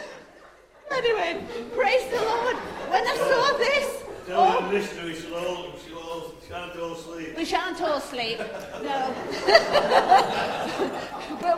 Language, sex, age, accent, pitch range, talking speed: English, female, 50-69, British, 235-315 Hz, 105 wpm